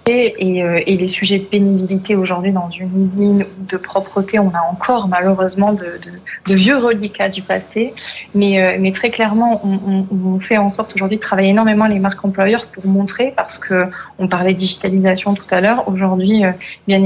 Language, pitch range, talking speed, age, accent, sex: French, 190-220 Hz, 185 wpm, 20-39, French, female